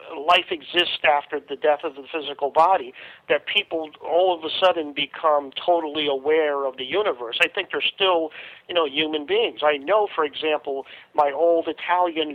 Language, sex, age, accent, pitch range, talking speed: English, male, 50-69, American, 150-185 Hz, 175 wpm